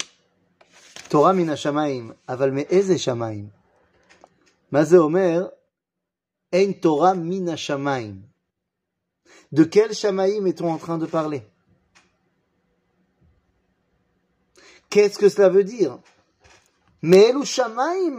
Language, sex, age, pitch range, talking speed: French, male, 30-49, 140-200 Hz, 90 wpm